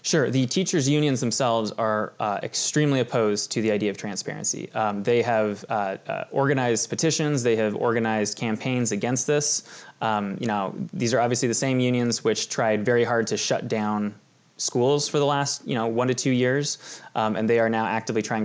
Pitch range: 110-130 Hz